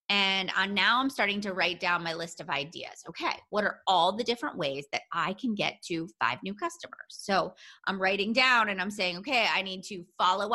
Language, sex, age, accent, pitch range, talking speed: English, female, 30-49, American, 180-225 Hz, 215 wpm